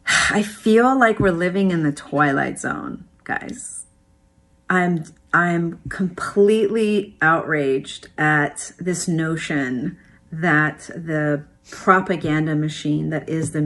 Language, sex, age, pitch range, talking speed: English, female, 40-59, 150-200 Hz, 105 wpm